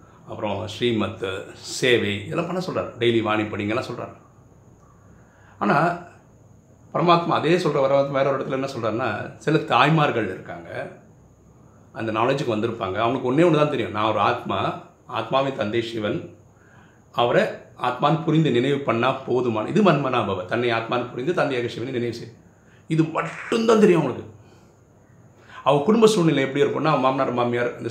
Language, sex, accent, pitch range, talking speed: Tamil, male, native, 115-145 Hz, 135 wpm